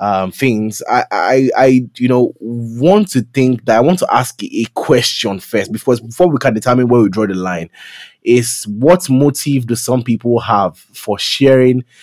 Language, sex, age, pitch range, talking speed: English, male, 20-39, 115-145 Hz, 180 wpm